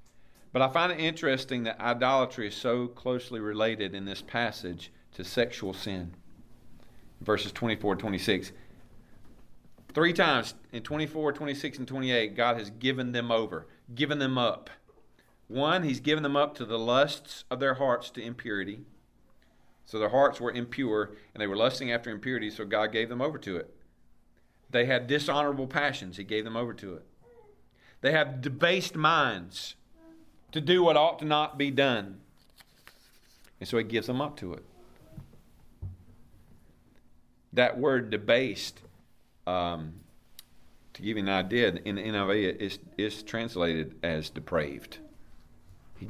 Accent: American